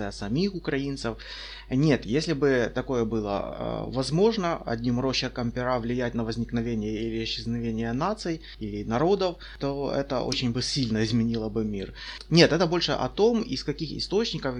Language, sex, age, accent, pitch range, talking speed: Russian, male, 20-39, native, 120-155 Hz, 150 wpm